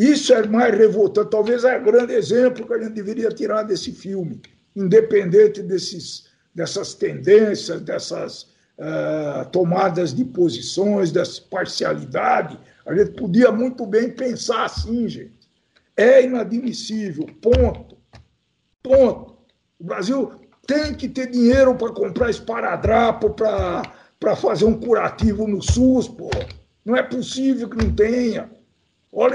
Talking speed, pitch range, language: 125 wpm, 190-250 Hz, Portuguese